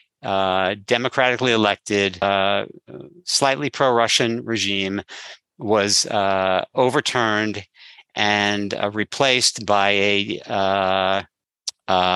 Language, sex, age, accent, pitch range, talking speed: English, male, 50-69, American, 95-115 Hz, 80 wpm